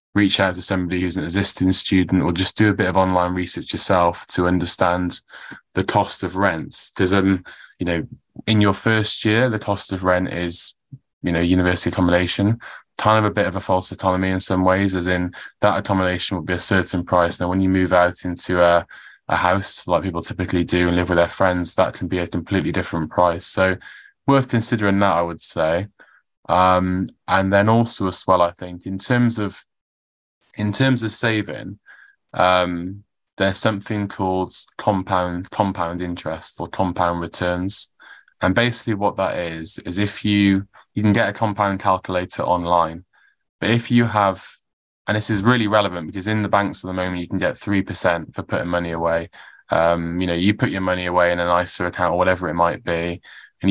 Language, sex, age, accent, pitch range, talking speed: English, male, 20-39, British, 90-100 Hz, 195 wpm